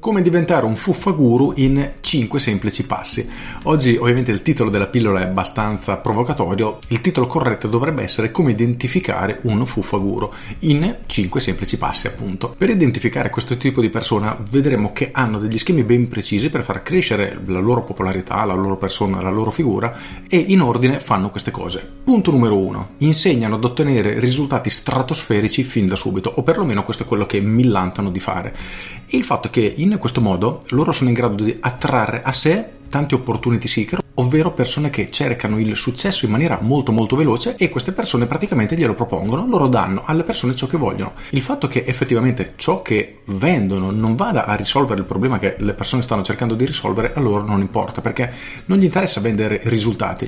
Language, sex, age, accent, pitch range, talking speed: Italian, male, 40-59, native, 105-140 Hz, 185 wpm